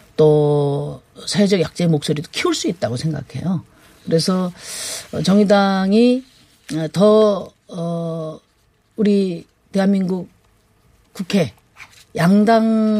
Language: Korean